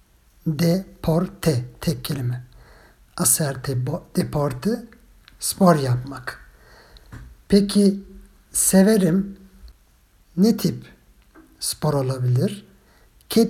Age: 50-69